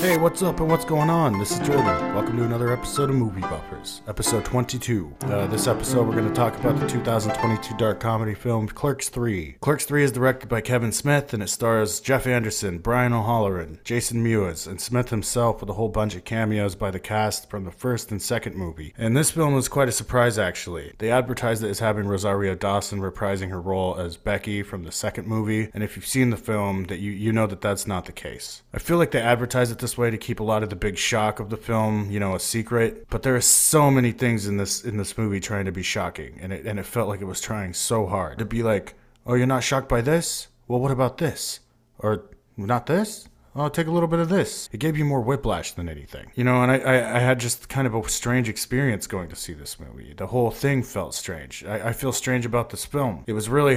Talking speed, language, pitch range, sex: 245 wpm, English, 100-125 Hz, male